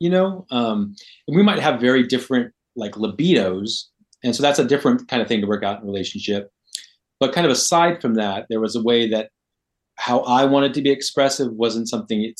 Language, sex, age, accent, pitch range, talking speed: English, male, 30-49, American, 105-135 Hz, 220 wpm